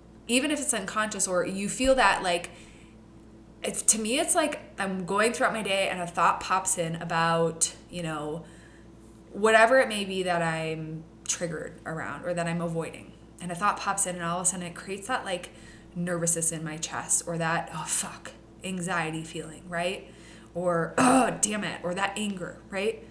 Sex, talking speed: female, 185 wpm